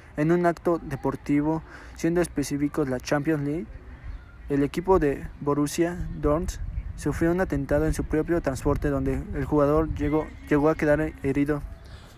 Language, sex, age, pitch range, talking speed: Spanish, male, 20-39, 135-160 Hz, 145 wpm